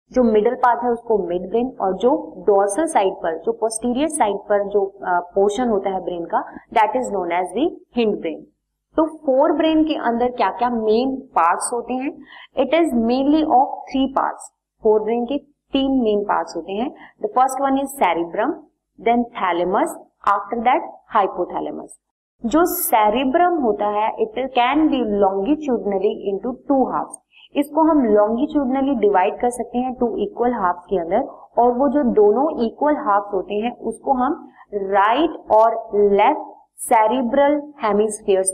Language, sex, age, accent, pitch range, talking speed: Hindi, female, 30-49, native, 205-270 Hz, 155 wpm